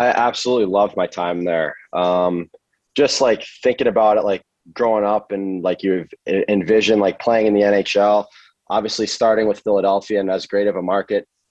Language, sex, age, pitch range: English, male, 20-39, 90-100 Hz